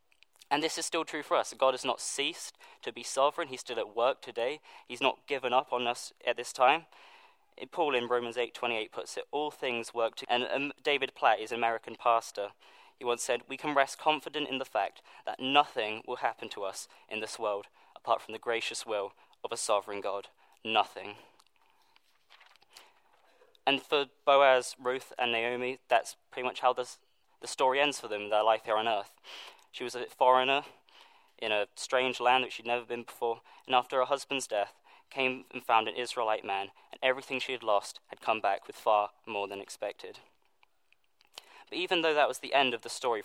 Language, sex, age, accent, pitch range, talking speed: English, male, 20-39, British, 115-150 Hz, 195 wpm